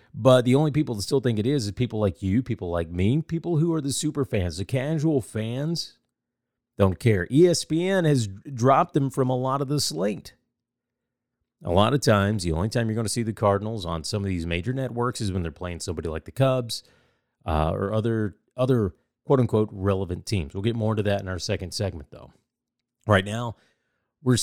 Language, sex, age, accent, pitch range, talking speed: English, male, 30-49, American, 95-125 Hz, 205 wpm